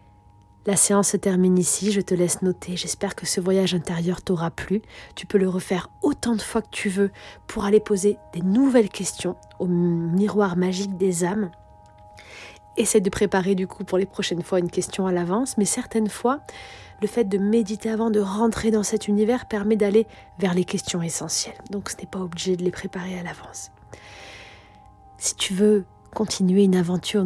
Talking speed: 185 wpm